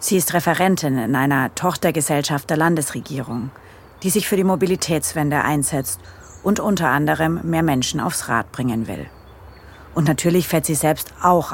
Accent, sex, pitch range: German, female, 120-170 Hz